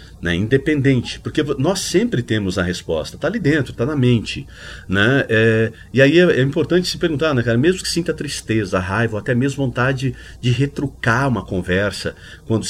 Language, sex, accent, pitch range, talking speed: Portuguese, male, Brazilian, 95-140 Hz, 185 wpm